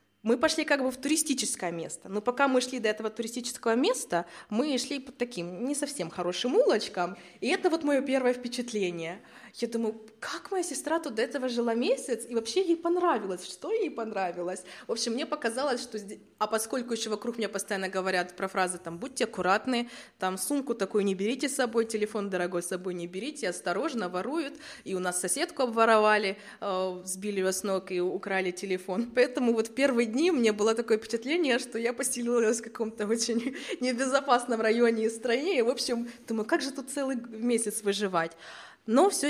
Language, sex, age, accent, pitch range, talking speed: Ukrainian, female, 20-39, native, 195-255 Hz, 185 wpm